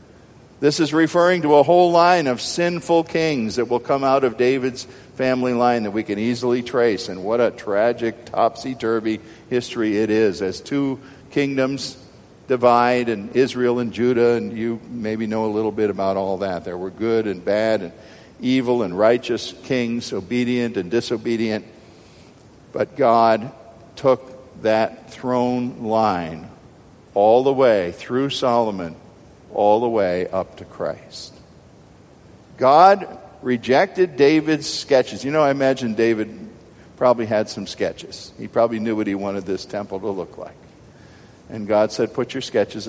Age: 50-69